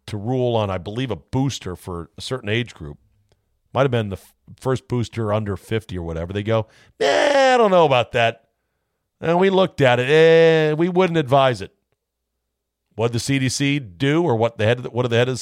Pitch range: 110-160 Hz